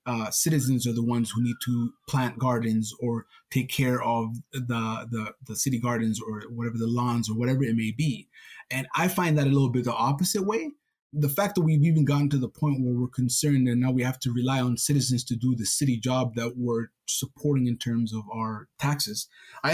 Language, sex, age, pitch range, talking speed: English, male, 20-39, 120-145 Hz, 220 wpm